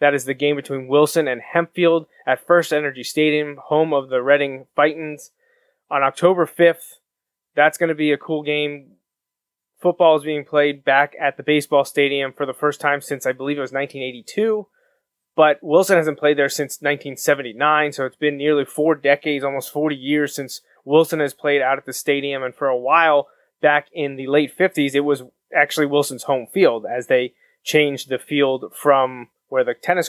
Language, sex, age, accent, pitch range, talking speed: English, male, 20-39, American, 140-160 Hz, 185 wpm